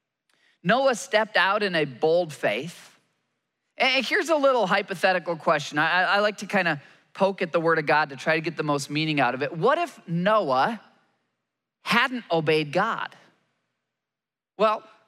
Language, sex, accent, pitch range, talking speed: English, male, American, 165-210 Hz, 165 wpm